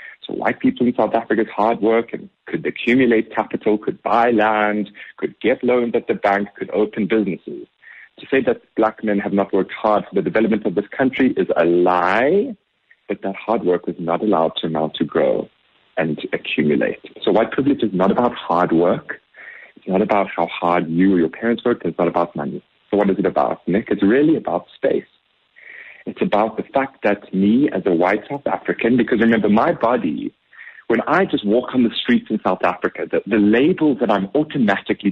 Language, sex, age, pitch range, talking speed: English, male, 40-59, 105-150 Hz, 200 wpm